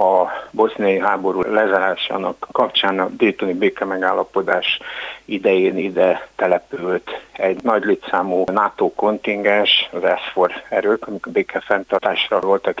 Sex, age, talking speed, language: male, 60-79, 105 wpm, Hungarian